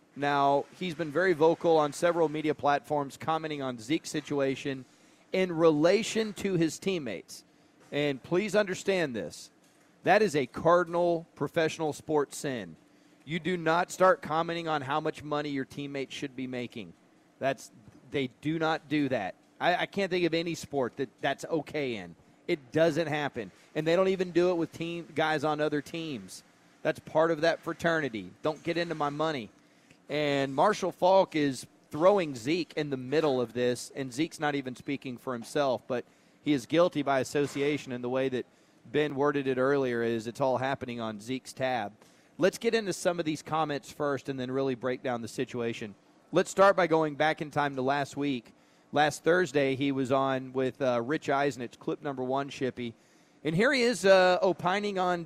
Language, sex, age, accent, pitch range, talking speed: English, male, 40-59, American, 135-165 Hz, 185 wpm